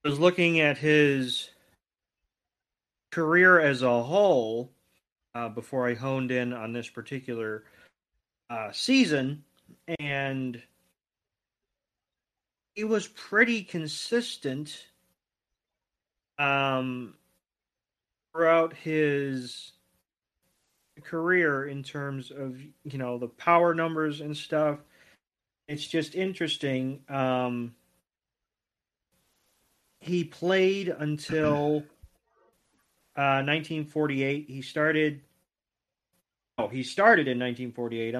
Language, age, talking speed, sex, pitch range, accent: English, 30-49, 85 wpm, male, 125-155 Hz, American